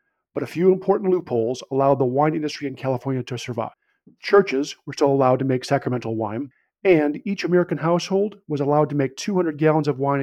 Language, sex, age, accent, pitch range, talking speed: English, male, 40-59, American, 130-155 Hz, 195 wpm